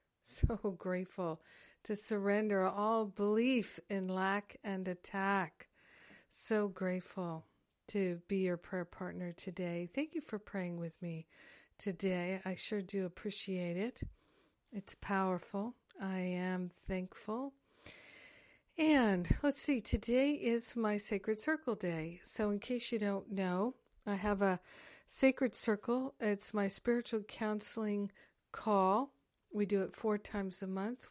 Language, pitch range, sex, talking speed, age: English, 185-220 Hz, female, 130 wpm, 50-69